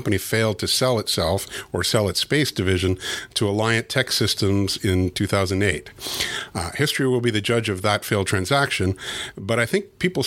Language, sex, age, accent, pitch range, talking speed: English, male, 50-69, American, 100-130 Hz, 170 wpm